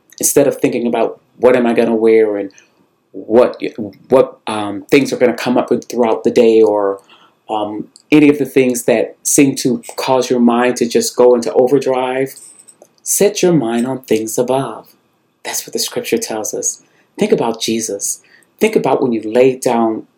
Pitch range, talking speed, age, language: 115-135 Hz, 180 wpm, 40-59, English